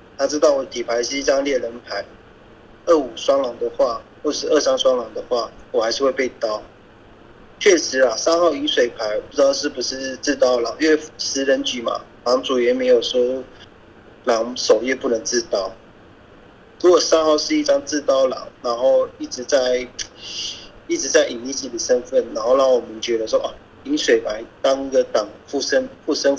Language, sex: Chinese, male